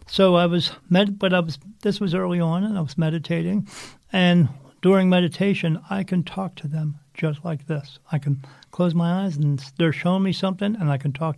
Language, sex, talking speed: English, male, 210 wpm